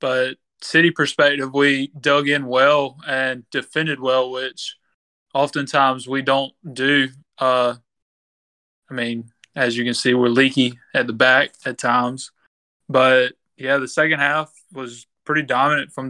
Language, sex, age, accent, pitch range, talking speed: English, male, 20-39, American, 125-140 Hz, 140 wpm